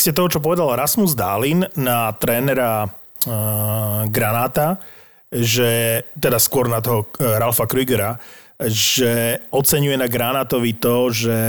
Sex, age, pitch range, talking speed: male, 30-49, 115-140 Hz, 105 wpm